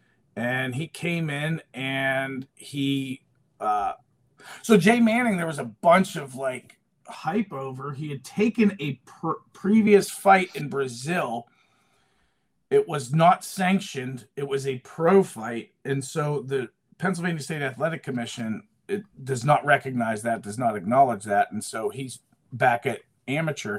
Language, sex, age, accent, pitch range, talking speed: English, male, 40-59, American, 135-190 Hz, 140 wpm